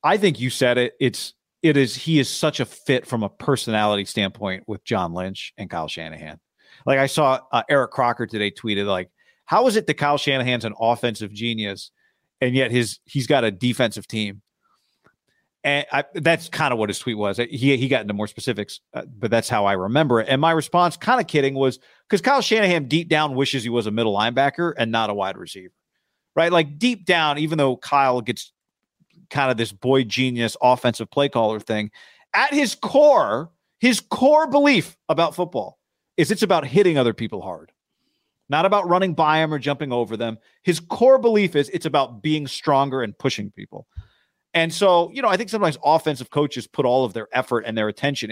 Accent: American